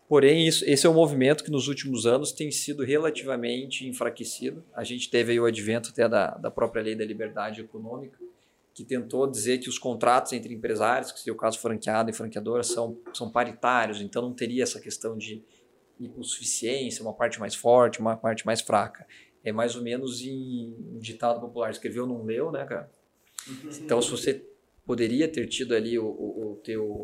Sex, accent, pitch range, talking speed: male, Brazilian, 115-150 Hz, 190 wpm